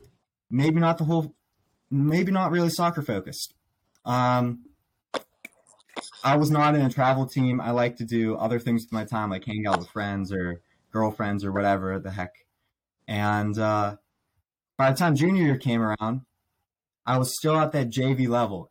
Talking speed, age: 165 wpm, 20-39